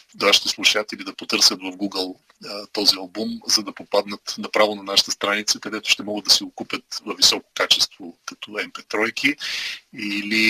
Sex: male